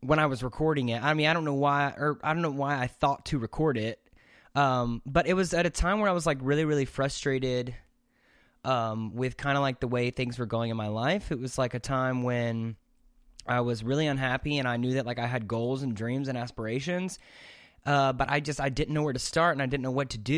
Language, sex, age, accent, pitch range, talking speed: English, male, 20-39, American, 125-155 Hz, 255 wpm